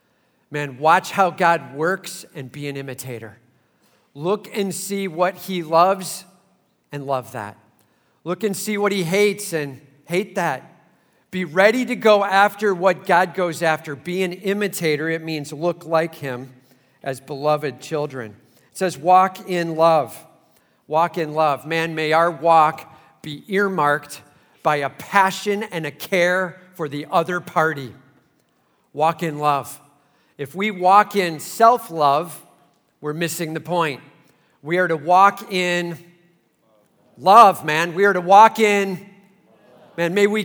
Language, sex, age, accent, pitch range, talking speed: English, male, 50-69, American, 150-195 Hz, 145 wpm